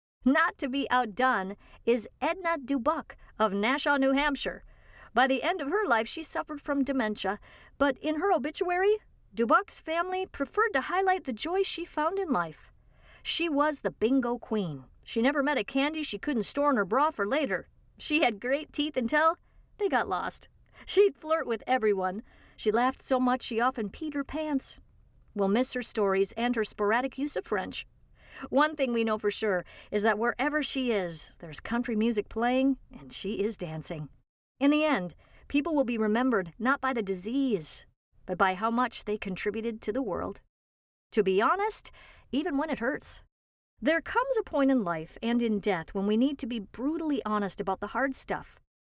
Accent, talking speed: American, 185 wpm